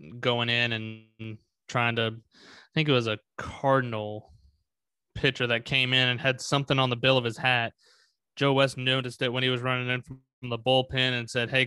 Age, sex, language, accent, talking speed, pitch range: 20-39, male, English, American, 200 wpm, 120-145 Hz